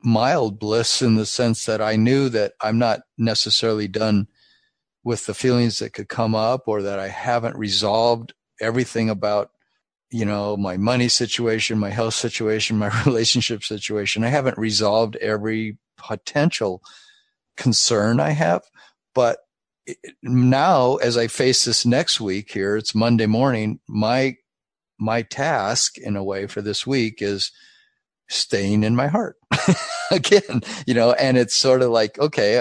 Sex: male